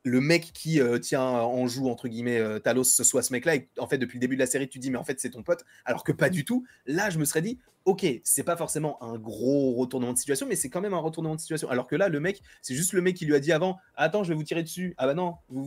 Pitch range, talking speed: 120-150 Hz, 320 wpm